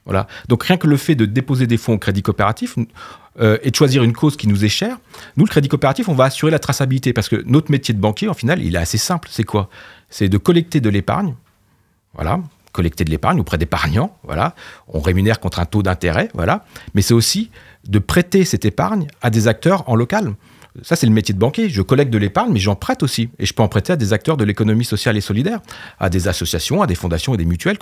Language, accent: French, French